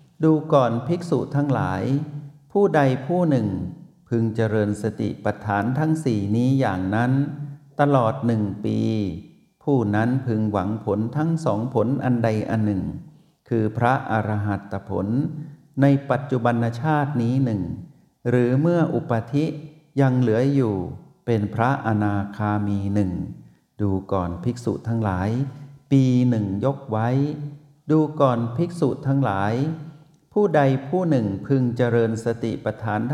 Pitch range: 110-145 Hz